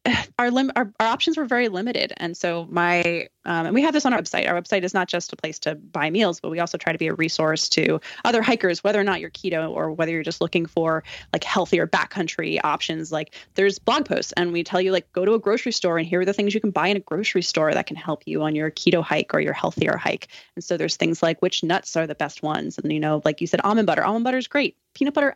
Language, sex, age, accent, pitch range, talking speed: English, female, 20-39, American, 170-205 Hz, 275 wpm